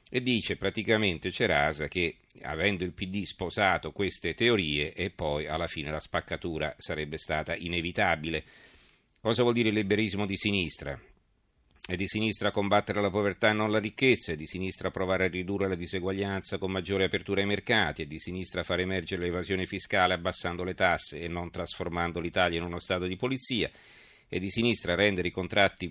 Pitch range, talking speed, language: 85-105 Hz, 175 wpm, Italian